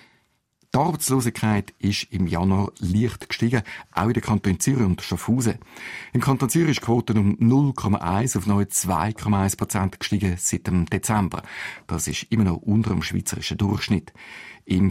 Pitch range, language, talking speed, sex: 95-120 Hz, German, 150 wpm, male